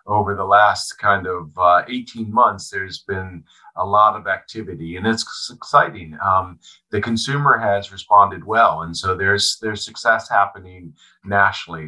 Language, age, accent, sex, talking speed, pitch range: English, 40-59, American, male, 150 wpm, 90-110 Hz